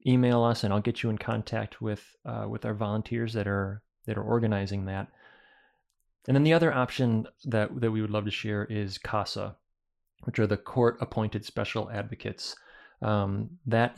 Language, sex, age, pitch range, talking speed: English, male, 30-49, 105-120 Hz, 180 wpm